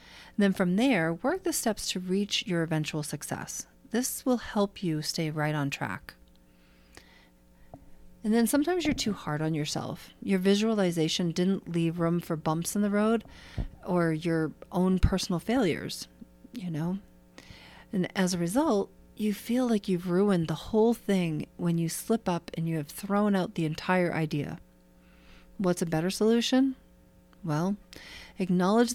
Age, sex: 40-59, female